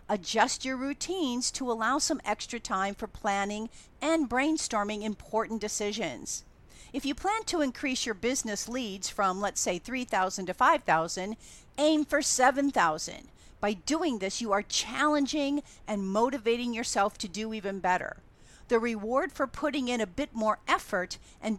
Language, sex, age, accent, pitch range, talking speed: English, female, 50-69, American, 205-275 Hz, 150 wpm